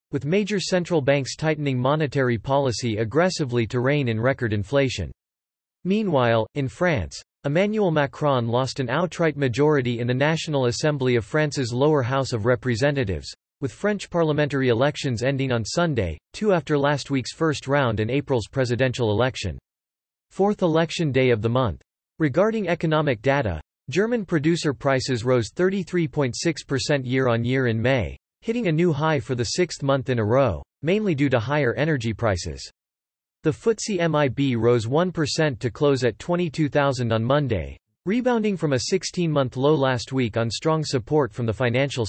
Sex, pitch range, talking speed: male, 120-155 Hz, 155 wpm